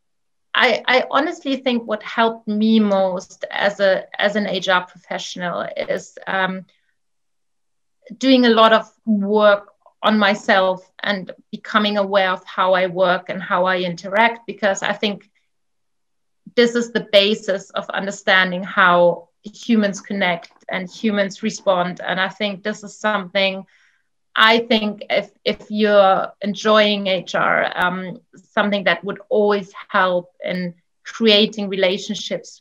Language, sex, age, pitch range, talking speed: English, female, 30-49, 185-215 Hz, 130 wpm